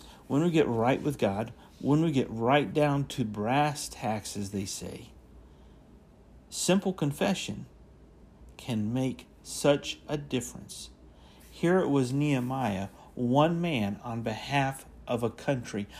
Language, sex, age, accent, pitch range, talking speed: English, male, 50-69, American, 145-210 Hz, 140 wpm